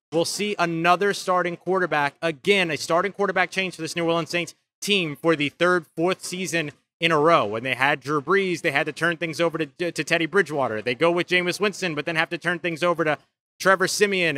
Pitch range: 150-180 Hz